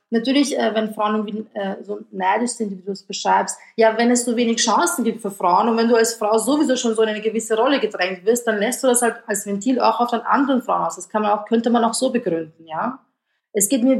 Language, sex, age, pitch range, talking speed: German, female, 30-49, 200-240 Hz, 255 wpm